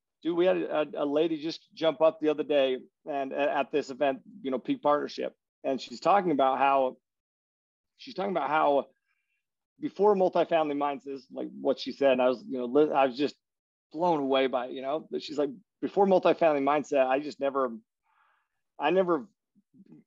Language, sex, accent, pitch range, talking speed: English, male, American, 135-185 Hz, 190 wpm